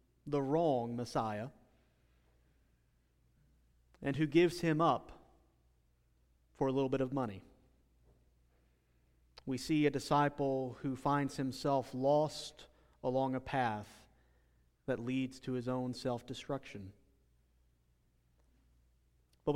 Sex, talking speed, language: male, 100 wpm, English